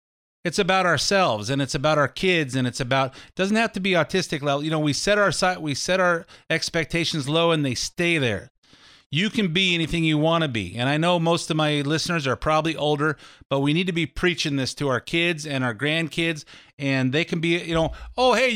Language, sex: English, male